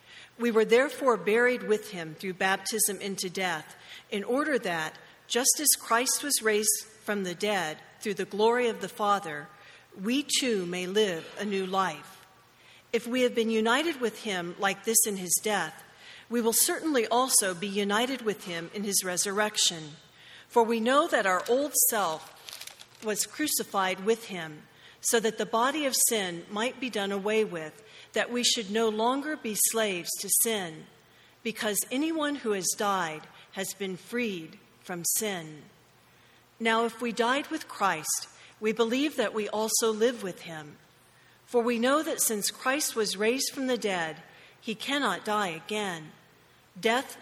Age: 50-69